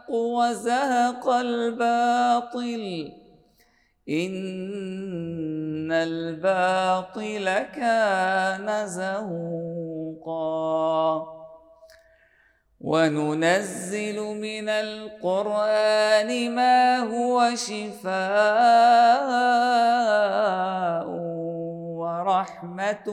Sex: male